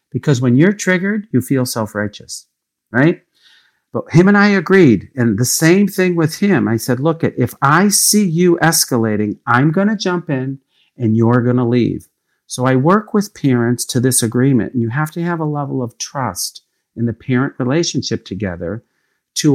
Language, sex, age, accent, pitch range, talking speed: English, male, 50-69, American, 115-150 Hz, 185 wpm